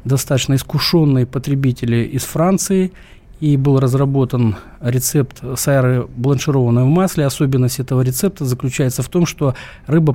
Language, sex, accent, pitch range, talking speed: Russian, male, native, 120-140 Hz, 125 wpm